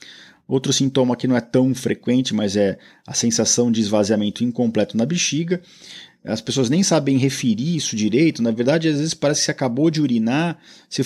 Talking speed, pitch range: 185 wpm, 115-155 Hz